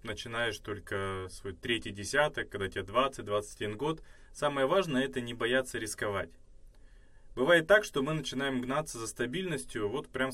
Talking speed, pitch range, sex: 145 wpm, 110-145 Hz, male